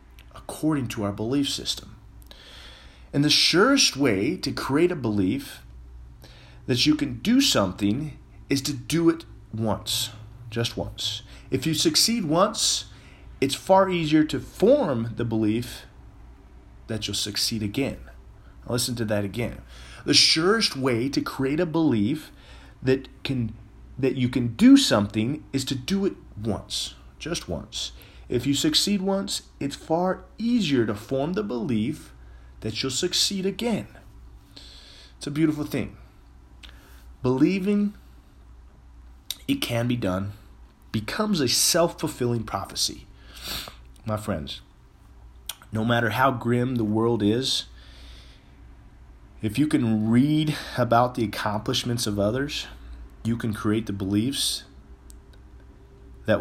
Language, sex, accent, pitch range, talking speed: English, male, American, 95-140 Hz, 125 wpm